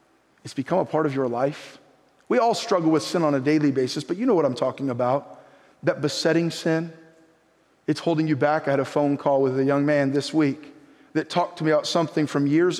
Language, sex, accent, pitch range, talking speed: English, male, American, 150-210 Hz, 230 wpm